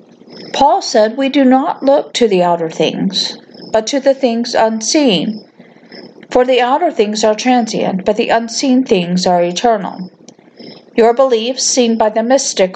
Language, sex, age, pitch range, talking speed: English, female, 50-69, 200-255 Hz, 155 wpm